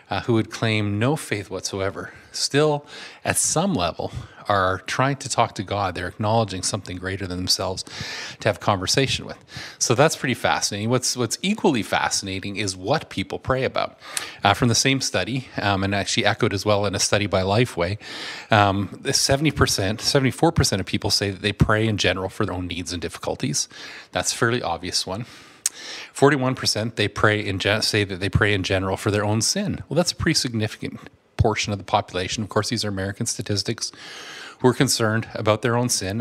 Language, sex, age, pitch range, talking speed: English, male, 30-49, 100-125 Hz, 190 wpm